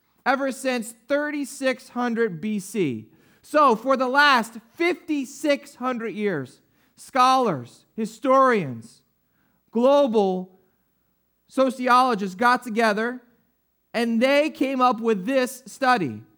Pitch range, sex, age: 205-275 Hz, male, 30-49